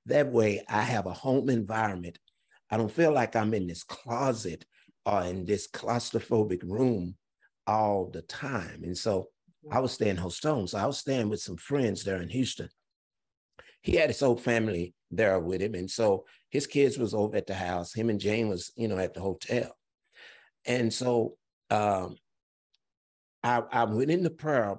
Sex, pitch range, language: male, 100-130 Hz, English